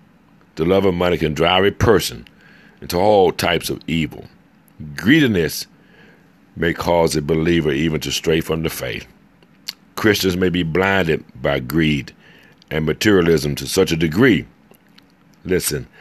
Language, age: English, 60-79